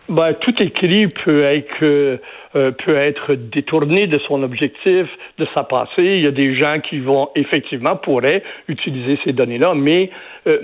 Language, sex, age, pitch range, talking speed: French, male, 60-79, 140-180 Hz, 160 wpm